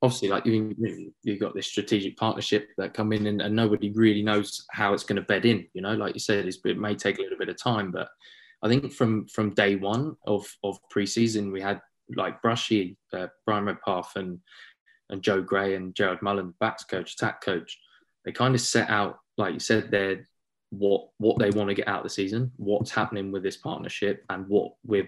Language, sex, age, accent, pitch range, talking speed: English, male, 20-39, British, 100-110 Hz, 220 wpm